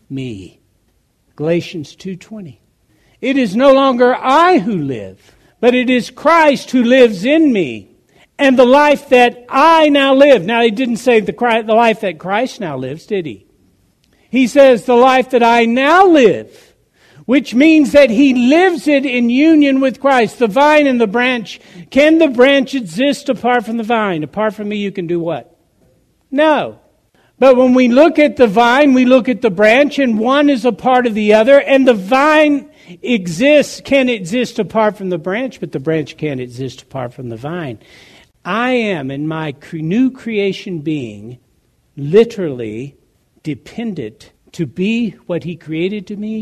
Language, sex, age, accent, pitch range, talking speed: English, male, 60-79, American, 155-260 Hz, 170 wpm